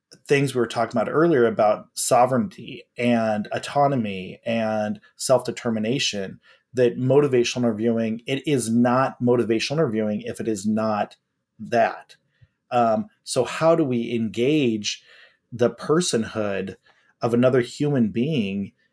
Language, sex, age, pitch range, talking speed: English, male, 30-49, 110-135 Hz, 115 wpm